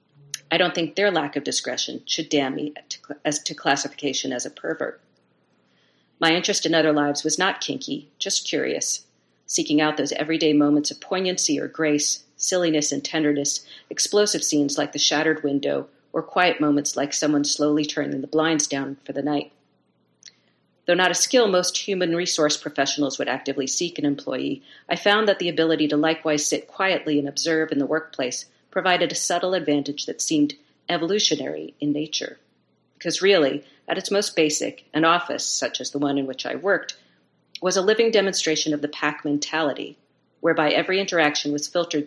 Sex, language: female, English